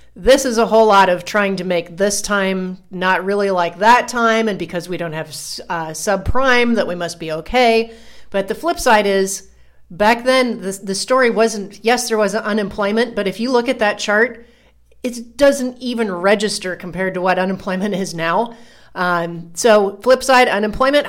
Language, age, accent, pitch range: English, 40-59, American, 180-230 Hz